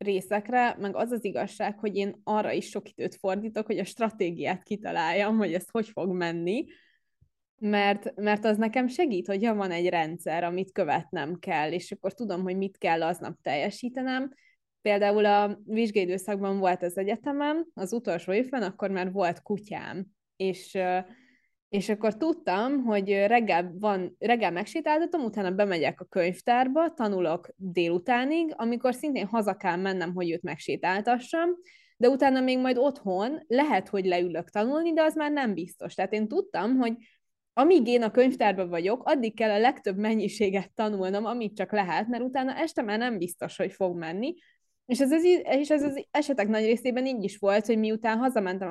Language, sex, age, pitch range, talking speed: Hungarian, female, 20-39, 190-245 Hz, 160 wpm